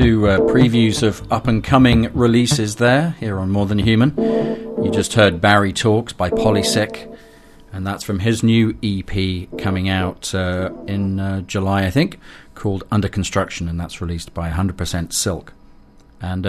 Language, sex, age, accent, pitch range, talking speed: English, male, 40-59, British, 90-110 Hz, 160 wpm